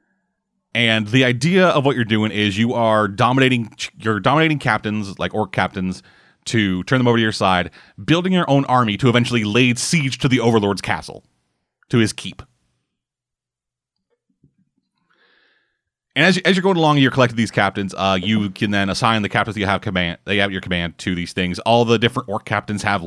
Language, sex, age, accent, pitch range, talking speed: English, male, 30-49, American, 95-125 Hz, 190 wpm